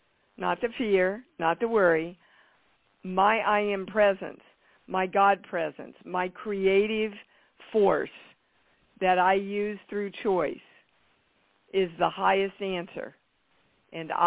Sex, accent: female, American